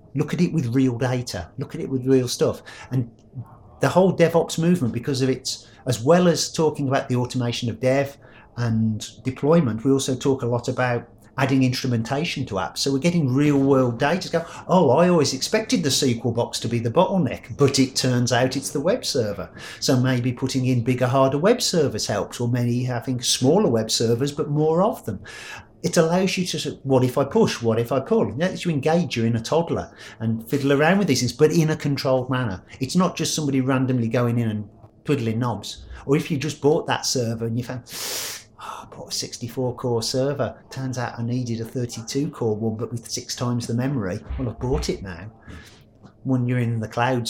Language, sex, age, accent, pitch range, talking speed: English, male, 50-69, British, 115-140 Hz, 215 wpm